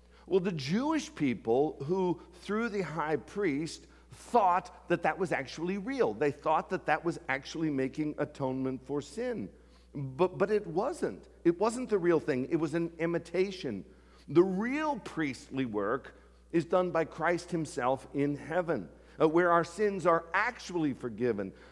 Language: English